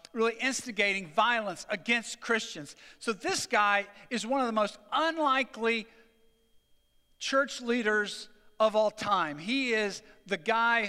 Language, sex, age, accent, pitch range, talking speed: English, male, 50-69, American, 175-230 Hz, 125 wpm